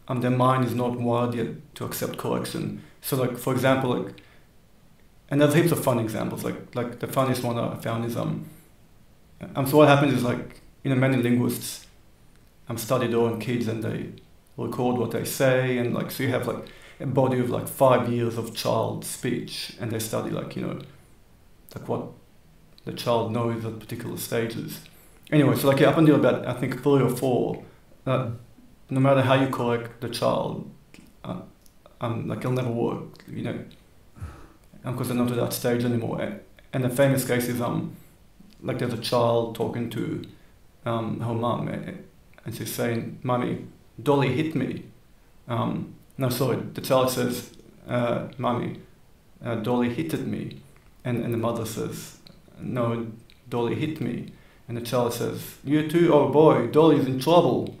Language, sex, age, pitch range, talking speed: Hebrew, male, 40-59, 115-140 Hz, 185 wpm